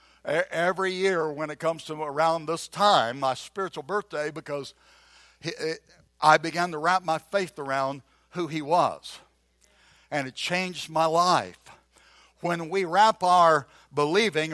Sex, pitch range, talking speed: male, 160-205 Hz, 135 wpm